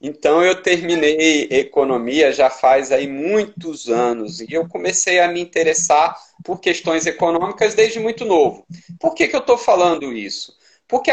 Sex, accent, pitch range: male, Brazilian, 170-245 Hz